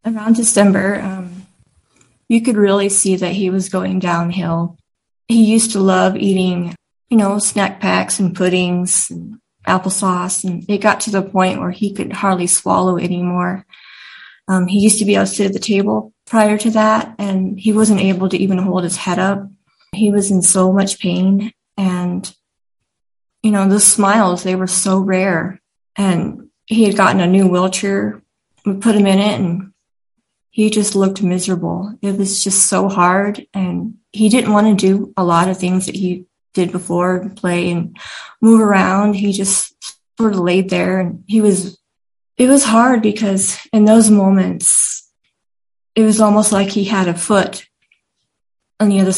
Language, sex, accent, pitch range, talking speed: English, female, American, 180-210 Hz, 175 wpm